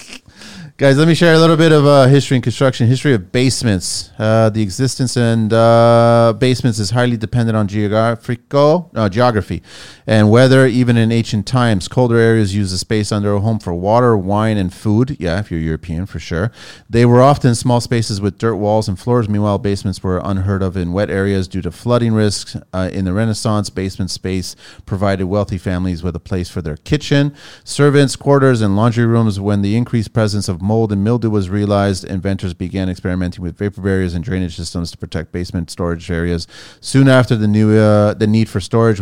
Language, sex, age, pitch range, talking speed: English, male, 30-49, 90-115 Hz, 195 wpm